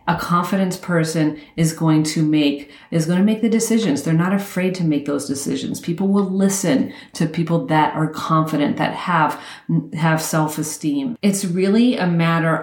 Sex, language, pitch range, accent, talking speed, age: female, English, 160-200 Hz, American, 170 wpm, 40-59